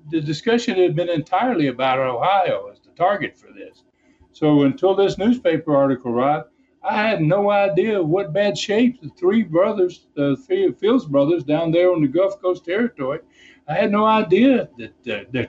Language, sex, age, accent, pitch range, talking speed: English, male, 60-79, American, 150-230 Hz, 175 wpm